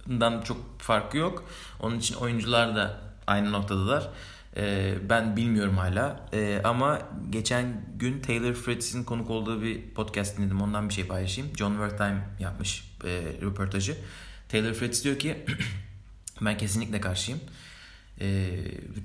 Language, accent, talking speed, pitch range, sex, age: Turkish, native, 130 wpm, 100-115 Hz, male, 30-49